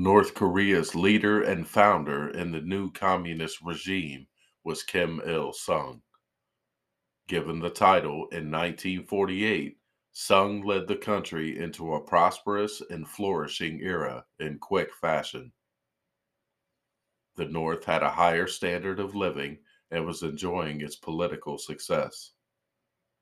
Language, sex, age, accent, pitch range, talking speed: English, male, 50-69, American, 80-95 Hz, 120 wpm